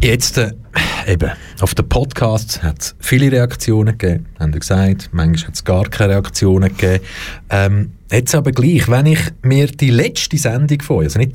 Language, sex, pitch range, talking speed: German, male, 95-140 Hz, 175 wpm